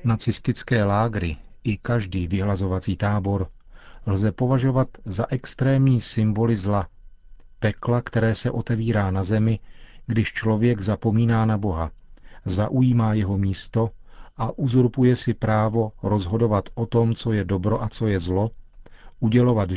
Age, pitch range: 40-59, 100-120 Hz